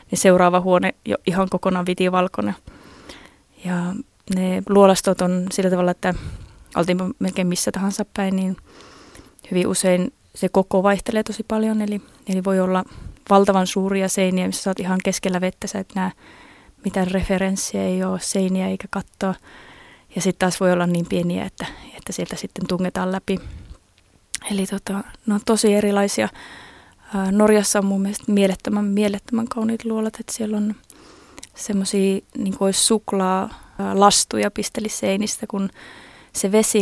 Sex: female